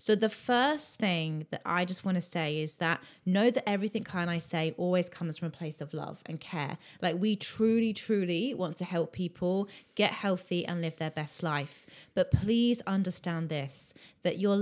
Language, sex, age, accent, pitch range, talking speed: English, female, 30-49, British, 165-195 Hz, 195 wpm